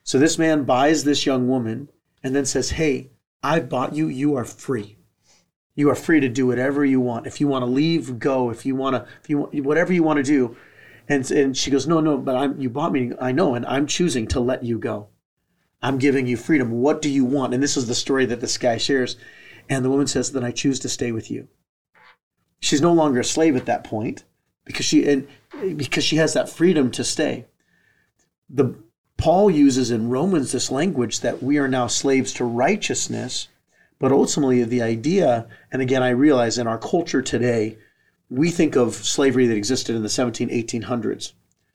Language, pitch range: English, 120-145 Hz